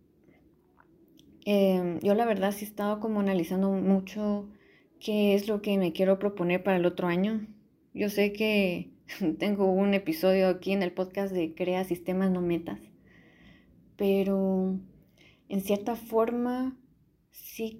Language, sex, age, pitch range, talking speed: Spanish, female, 20-39, 185-210 Hz, 140 wpm